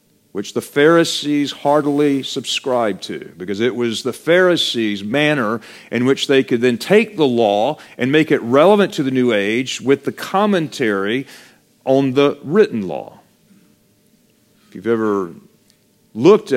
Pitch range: 110-160 Hz